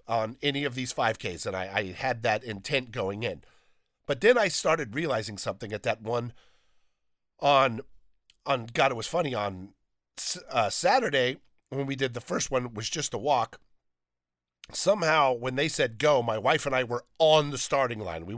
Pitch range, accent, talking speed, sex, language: 110-150 Hz, American, 185 wpm, male, English